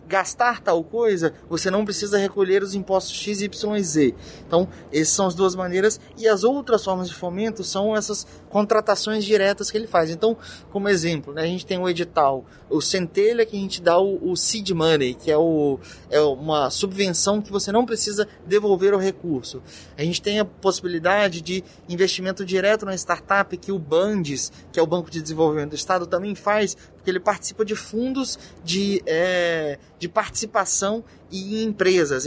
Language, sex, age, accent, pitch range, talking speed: Portuguese, male, 20-39, Brazilian, 180-215 Hz, 180 wpm